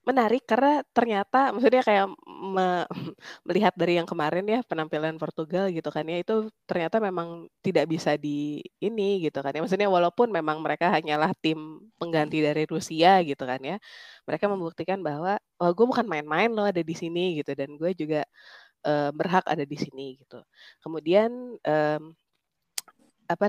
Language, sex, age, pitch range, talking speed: Indonesian, female, 20-39, 155-190 Hz, 160 wpm